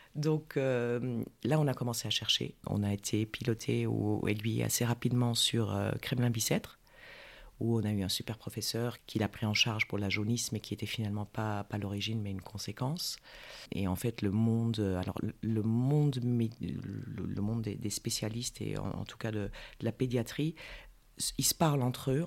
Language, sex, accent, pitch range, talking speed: French, female, French, 105-125 Hz, 190 wpm